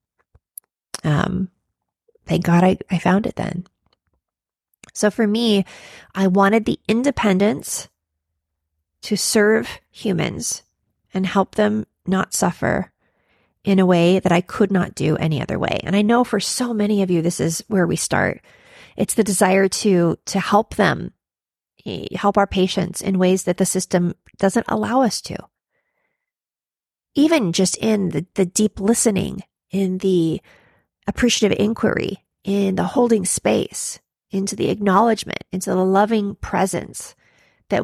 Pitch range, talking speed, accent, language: 185-220 Hz, 140 wpm, American, English